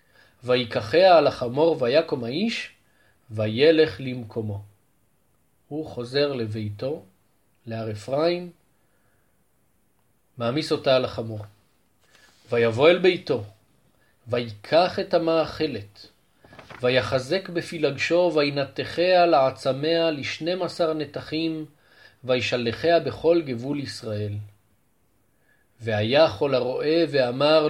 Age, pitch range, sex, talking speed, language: 40-59, 115-160 Hz, male, 80 wpm, Hebrew